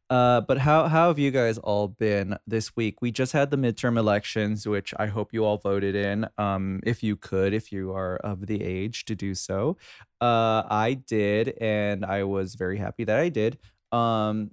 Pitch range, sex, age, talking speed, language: 105-125 Hz, male, 20-39, 200 wpm, English